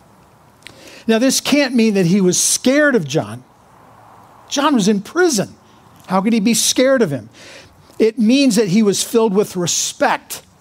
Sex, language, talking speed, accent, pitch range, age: male, English, 165 wpm, American, 180-235 Hz, 50-69